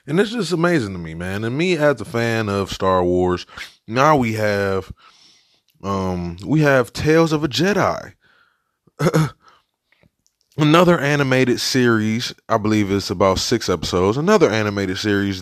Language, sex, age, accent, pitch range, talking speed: English, male, 20-39, American, 90-120 Hz, 145 wpm